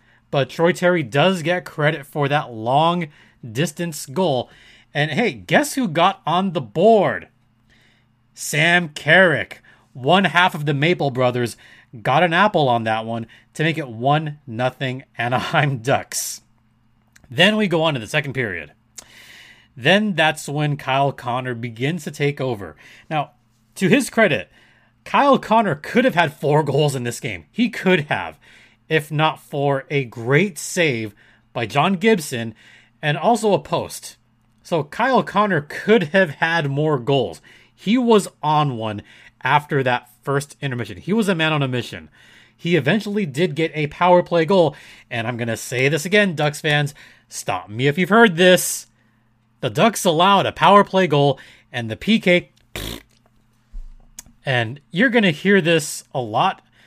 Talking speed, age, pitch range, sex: 160 wpm, 30-49, 120-175 Hz, male